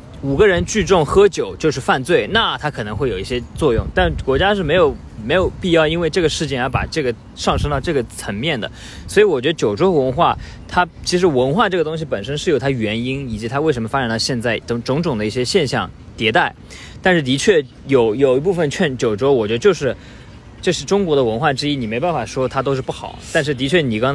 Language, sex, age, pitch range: Chinese, male, 20-39, 115-160 Hz